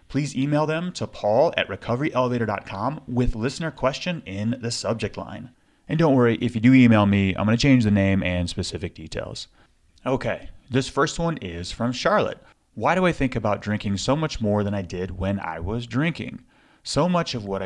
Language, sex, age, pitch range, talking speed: English, male, 30-49, 100-140 Hz, 195 wpm